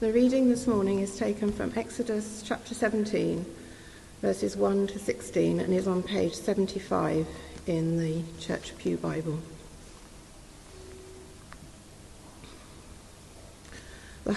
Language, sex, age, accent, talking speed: English, female, 60-79, British, 105 wpm